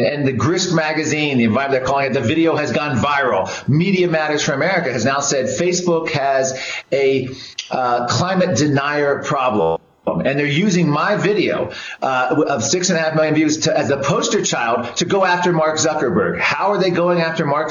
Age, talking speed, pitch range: 40-59, 190 wpm, 155-200 Hz